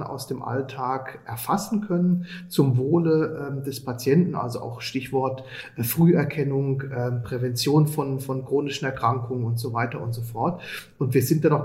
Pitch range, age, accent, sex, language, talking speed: 130-160 Hz, 40-59, German, male, German, 165 wpm